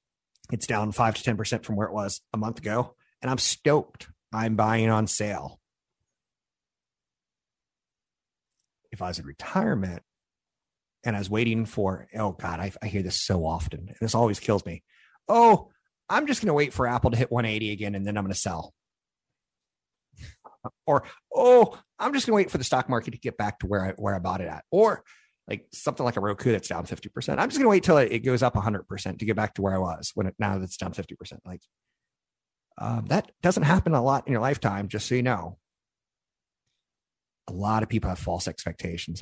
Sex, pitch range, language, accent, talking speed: male, 95-125 Hz, English, American, 210 wpm